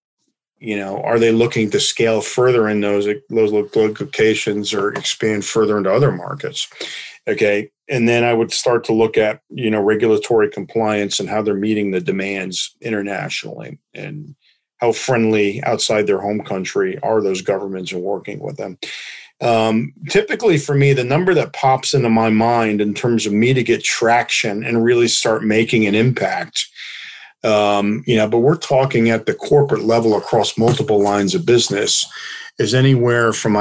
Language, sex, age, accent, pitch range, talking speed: English, male, 40-59, American, 105-125 Hz, 170 wpm